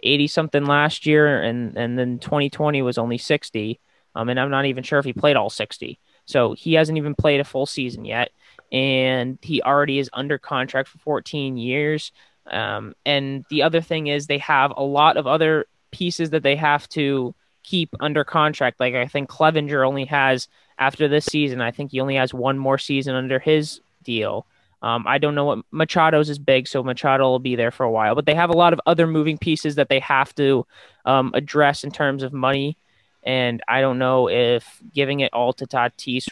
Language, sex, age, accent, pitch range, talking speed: English, male, 20-39, American, 125-145 Hz, 205 wpm